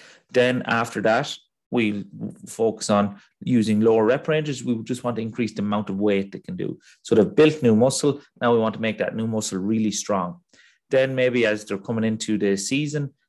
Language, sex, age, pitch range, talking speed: English, male, 30-49, 105-130 Hz, 205 wpm